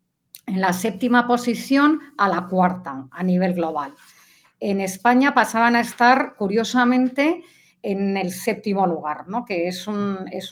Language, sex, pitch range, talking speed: Spanish, female, 180-220 Hz, 145 wpm